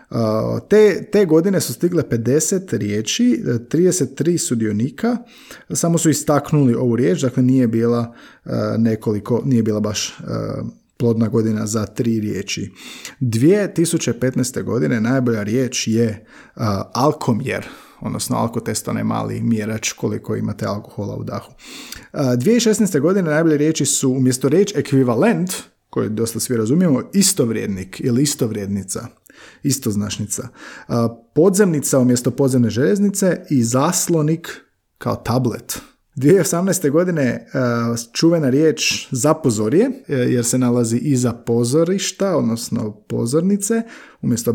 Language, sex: Croatian, male